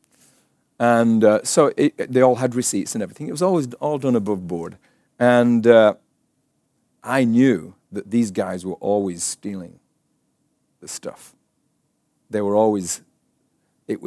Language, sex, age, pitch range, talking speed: English, male, 40-59, 100-130 Hz, 140 wpm